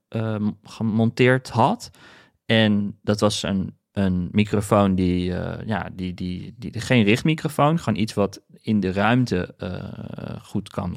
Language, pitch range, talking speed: Dutch, 105-125 Hz, 150 wpm